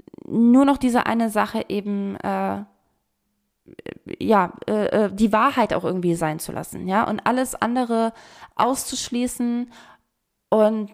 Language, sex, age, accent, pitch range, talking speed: German, female, 20-39, German, 215-270 Hz, 120 wpm